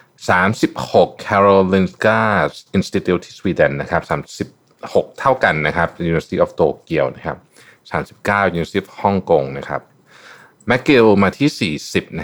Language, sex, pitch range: Thai, male, 90-110 Hz